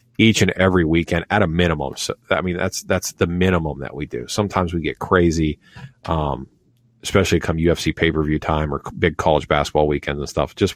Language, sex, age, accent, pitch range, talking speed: English, male, 40-59, American, 80-95 Hz, 195 wpm